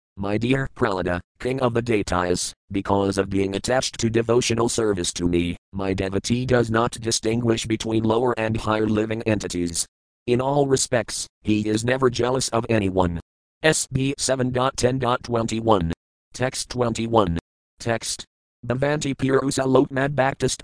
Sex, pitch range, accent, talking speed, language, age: male, 95-125 Hz, American, 135 wpm, English, 50-69